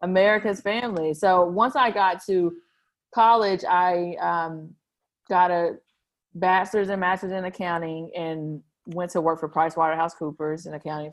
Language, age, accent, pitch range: English, 30-49, American, 170-205 Hz